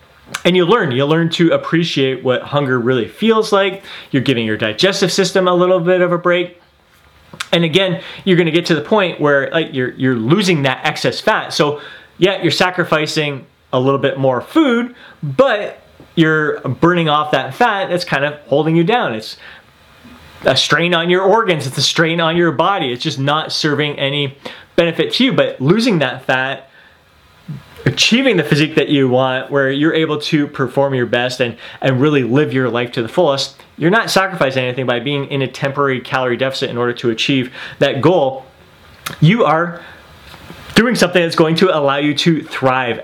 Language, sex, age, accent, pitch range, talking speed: English, male, 30-49, American, 135-180 Hz, 190 wpm